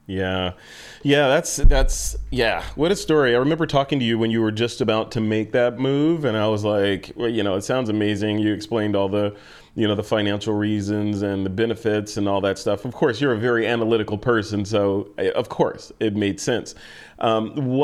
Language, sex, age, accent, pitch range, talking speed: English, male, 30-49, American, 105-125 Hz, 210 wpm